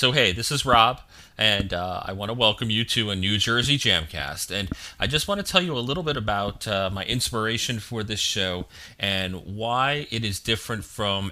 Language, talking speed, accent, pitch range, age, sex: English, 210 wpm, American, 95-120 Hz, 30-49, male